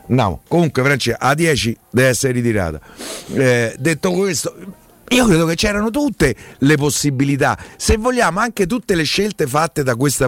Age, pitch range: 50-69, 110-160 Hz